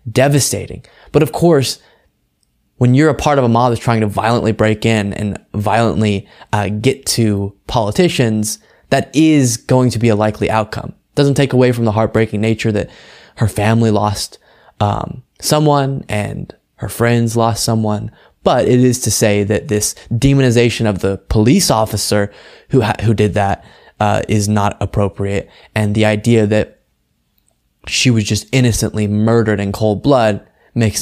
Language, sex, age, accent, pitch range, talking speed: English, male, 20-39, American, 105-120 Hz, 160 wpm